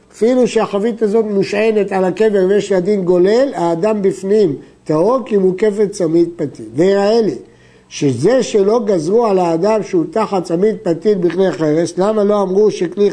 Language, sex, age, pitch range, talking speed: Hebrew, male, 60-79, 170-220 Hz, 155 wpm